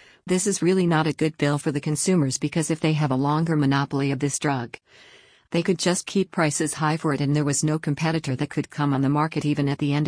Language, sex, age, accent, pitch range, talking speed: English, female, 50-69, American, 140-165 Hz, 255 wpm